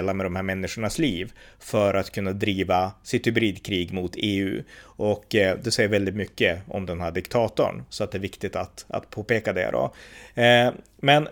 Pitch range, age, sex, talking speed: 100-120 Hz, 30-49, male, 175 wpm